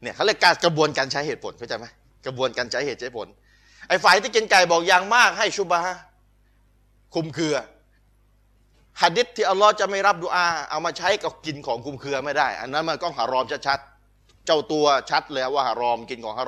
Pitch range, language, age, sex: 135-190 Hz, Thai, 20-39, male